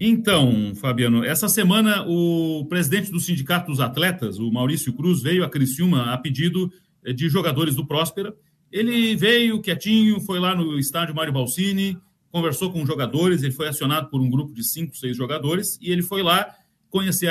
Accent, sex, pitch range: Brazilian, male, 150-195 Hz